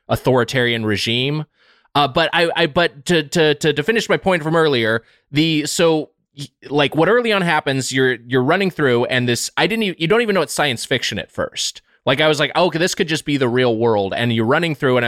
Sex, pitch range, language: male, 115-150 Hz, English